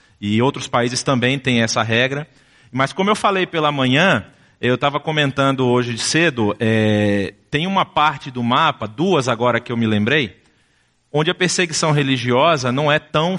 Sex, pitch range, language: male, 120-145 Hz, English